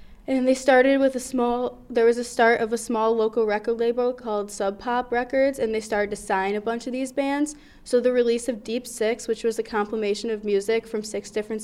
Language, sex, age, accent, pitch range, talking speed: English, female, 10-29, American, 200-235 Hz, 230 wpm